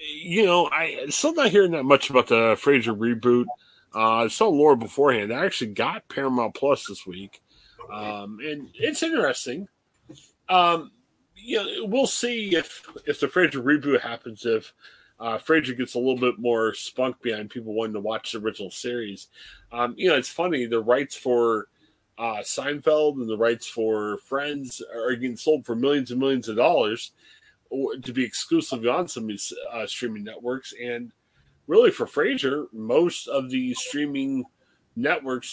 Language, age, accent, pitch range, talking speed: English, 30-49, American, 115-155 Hz, 170 wpm